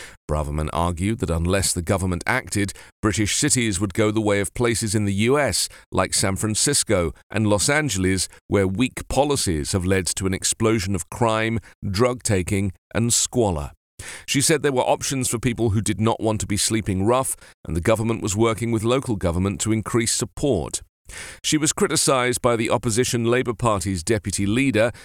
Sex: male